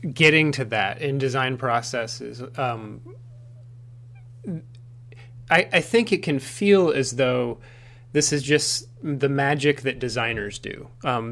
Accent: American